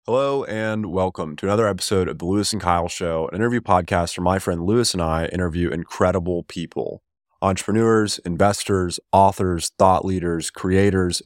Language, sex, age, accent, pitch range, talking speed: English, male, 20-39, American, 90-110 Hz, 160 wpm